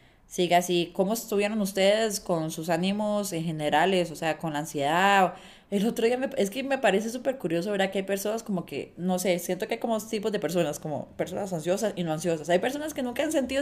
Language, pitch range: Spanish, 165-225 Hz